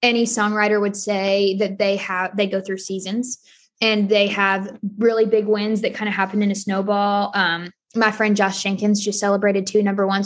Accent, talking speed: American, 200 wpm